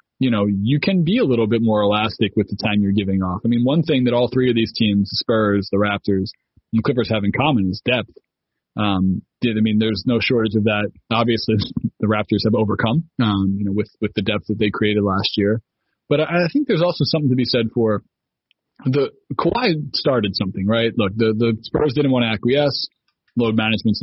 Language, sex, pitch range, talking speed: English, male, 105-125 Hz, 215 wpm